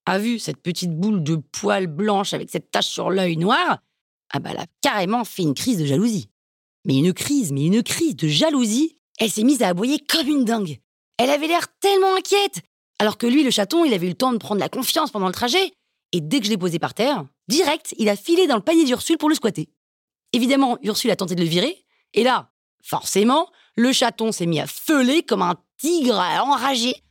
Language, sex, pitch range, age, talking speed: French, female, 185-285 Hz, 30-49, 225 wpm